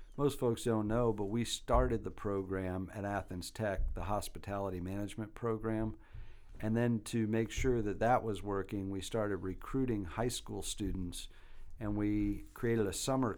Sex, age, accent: male, 50-69, American